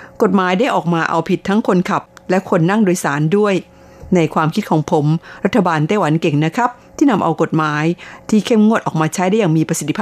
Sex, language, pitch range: female, Thai, 160-200 Hz